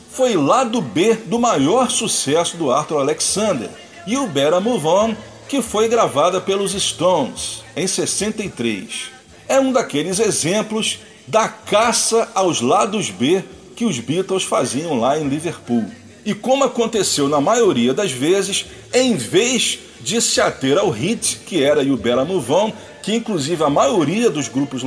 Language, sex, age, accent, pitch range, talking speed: Portuguese, male, 40-59, Brazilian, 180-235 Hz, 150 wpm